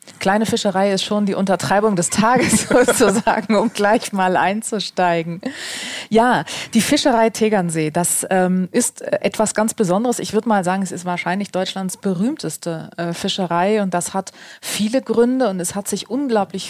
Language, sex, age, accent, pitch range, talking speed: German, female, 30-49, German, 175-215 Hz, 160 wpm